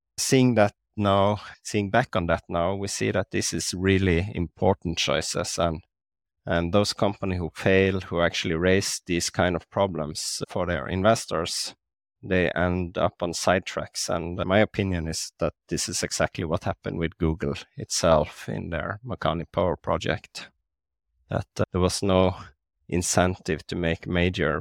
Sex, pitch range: male, 80-95 Hz